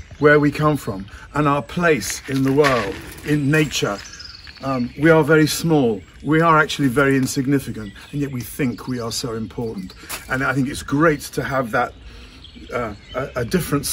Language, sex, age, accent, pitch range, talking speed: English, male, 50-69, British, 95-150 Hz, 180 wpm